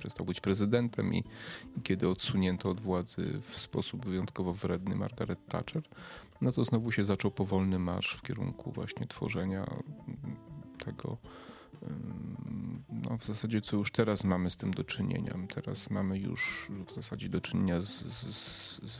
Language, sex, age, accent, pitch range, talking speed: Polish, male, 30-49, native, 95-110 Hz, 150 wpm